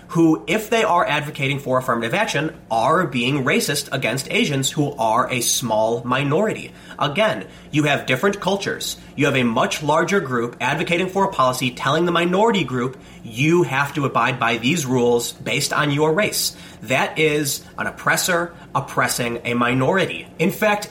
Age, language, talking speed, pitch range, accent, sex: 30-49, English, 165 wpm, 130-170 Hz, American, male